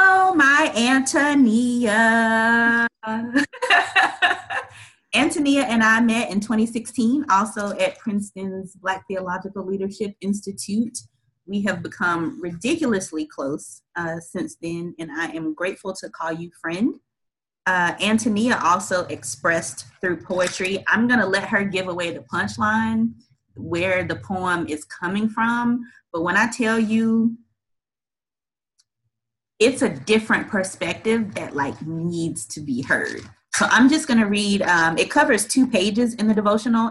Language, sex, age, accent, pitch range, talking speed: English, female, 30-49, American, 170-230 Hz, 130 wpm